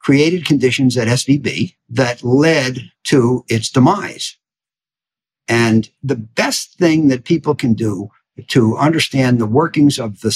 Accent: American